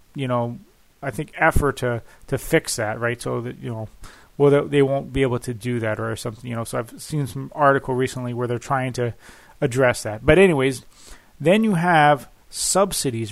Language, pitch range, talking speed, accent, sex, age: English, 130-170 Hz, 200 wpm, American, male, 30-49